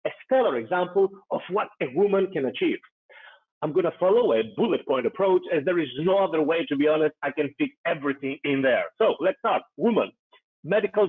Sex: male